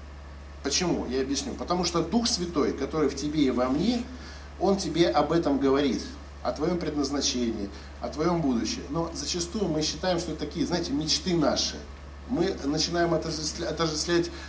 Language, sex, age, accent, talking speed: Russian, male, 50-69, native, 155 wpm